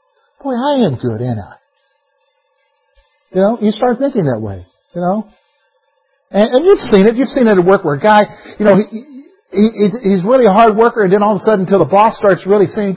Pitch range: 180-245 Hz